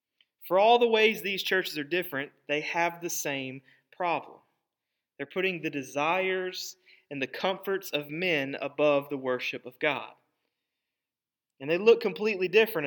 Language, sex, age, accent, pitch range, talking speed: English, male, 30-49, American, 145-195 Hz, 150 wpm